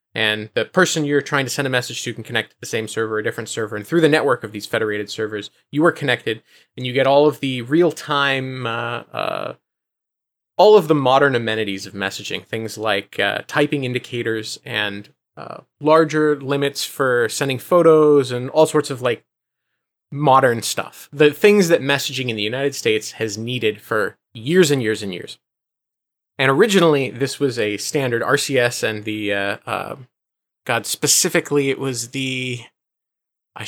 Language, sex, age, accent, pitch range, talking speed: English, male, 20-39, American, 115-145 Hz, 180 wpm